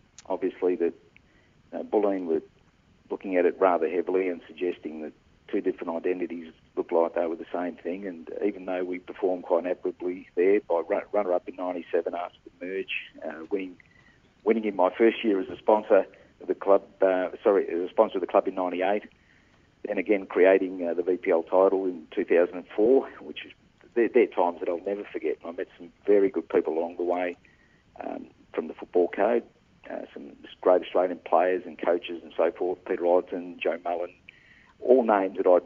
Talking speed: 190 wpm